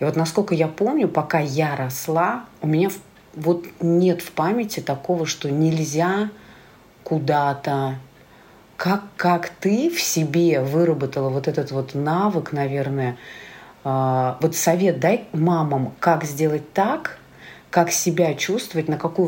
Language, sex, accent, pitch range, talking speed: Russian, female, native, 140-170 Hz, 125 wpm